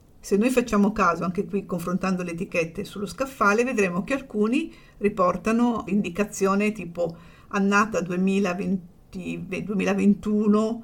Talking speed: 110 wpm